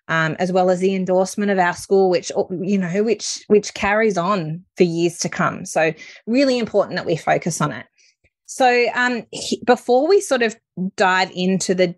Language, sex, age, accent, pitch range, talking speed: English, female, 20-39, Australian, 165-195 Hz, 190 wpm